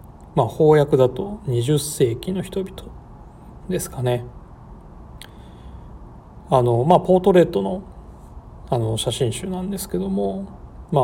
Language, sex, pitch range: Japanese, male, 115-175 Hz